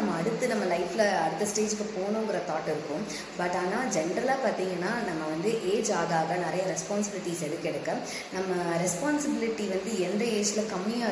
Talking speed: 145 wpm